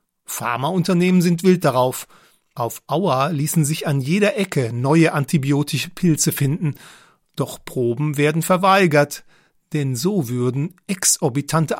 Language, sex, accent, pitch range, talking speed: German, male, German, 130-175 Hz, 115 wpm